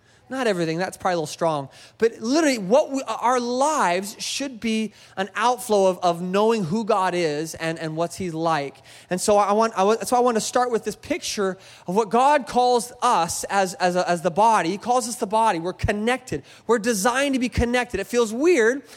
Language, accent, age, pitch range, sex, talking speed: English, American, 20-39, 160-235 Hz, male, 210 wpm